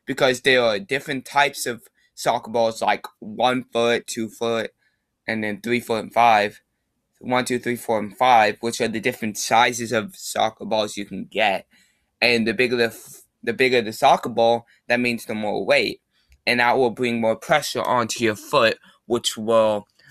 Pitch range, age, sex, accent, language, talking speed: 110-125 Hz, 20-39, male, American, English, 175 wpm